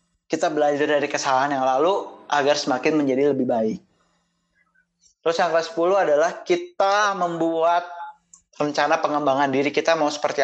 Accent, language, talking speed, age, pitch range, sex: native, Indonesian, 140 wpm, 20-39, 145-190 Hz, male